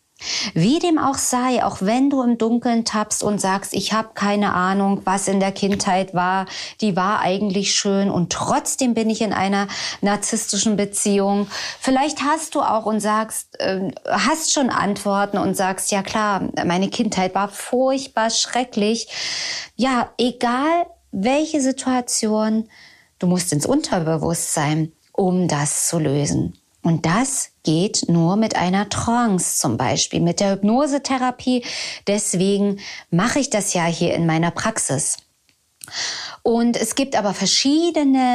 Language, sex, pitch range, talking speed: German, female, 190-245 Hz, 140 wpm